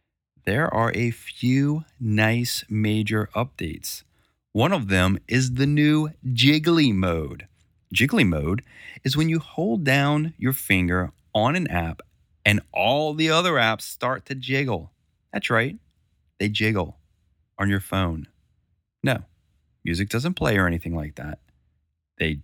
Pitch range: 90-140 Hz